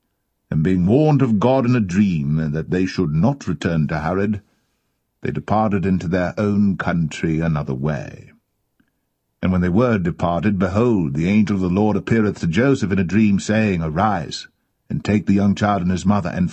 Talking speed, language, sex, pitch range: 185 wpm, English, male, 80-100 Hz